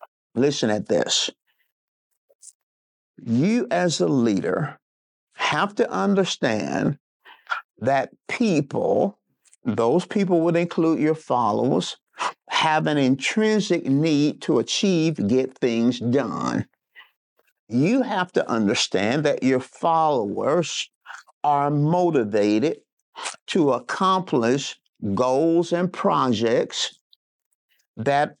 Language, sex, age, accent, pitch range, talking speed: English, male, 50-69, American, 130-180 Hz, 90 wpm